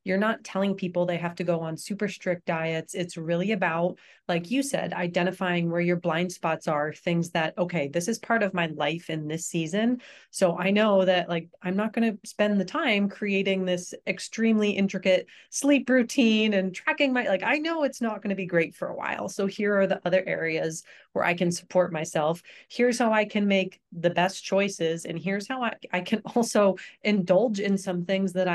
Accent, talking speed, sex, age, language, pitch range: American, 210 wpm, female, 30-49, English, 160-195 Hz